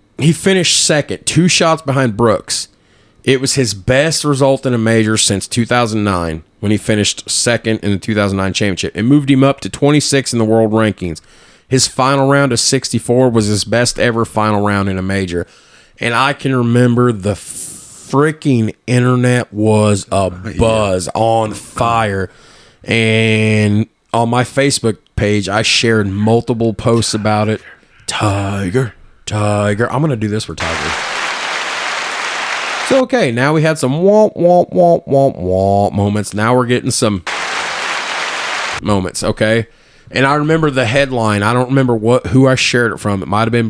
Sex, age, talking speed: male, 30-49, 155 wpm